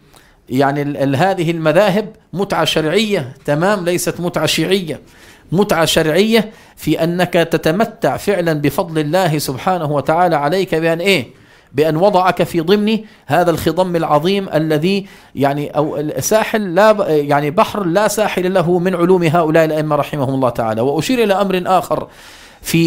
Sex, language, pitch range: male, Arabic, 150-190 Hz